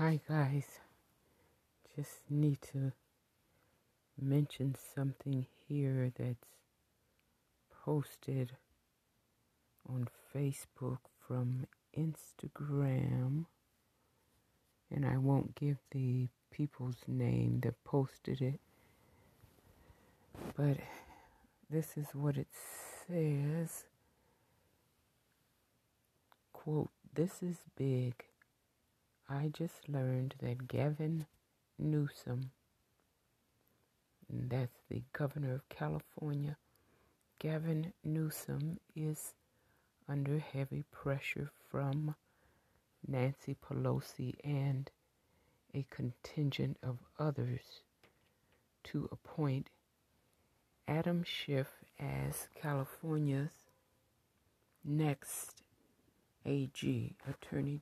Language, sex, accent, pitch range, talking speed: English, female, American, 125-150 Hz, 70 wpm